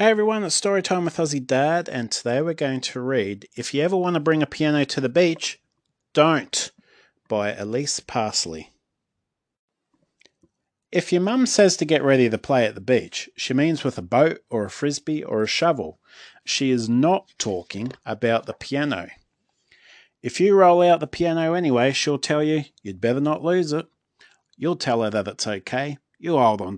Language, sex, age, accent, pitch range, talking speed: English, male, 30-49, Australian, 110-155 Hz, 185 wpm